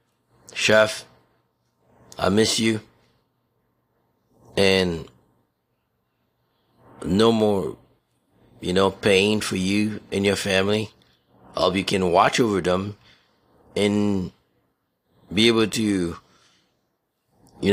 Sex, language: male, English